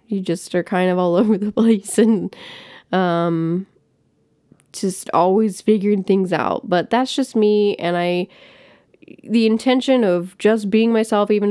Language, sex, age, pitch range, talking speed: English, female, 10-29, 170-200 Hz, 150 wpm